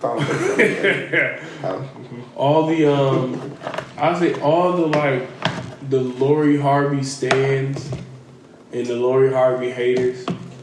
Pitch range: 125-145 Hz